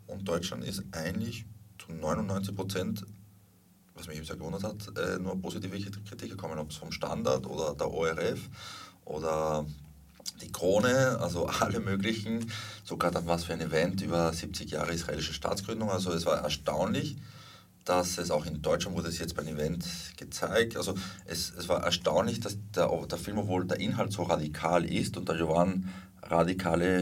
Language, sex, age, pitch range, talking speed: English, male, 30-49, 85-100 Hz, 165 wpm